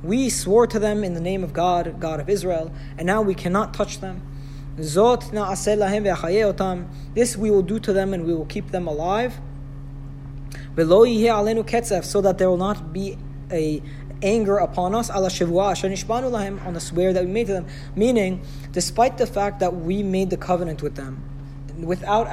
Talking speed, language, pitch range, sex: 160 wpm, English, 145-205 Hz, male